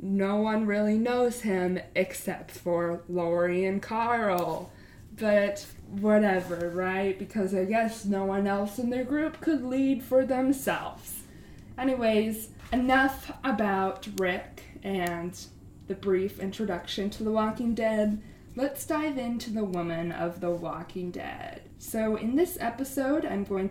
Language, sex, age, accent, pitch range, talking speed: English, female, 20-39, American, 190-245 Hz, 135 wpm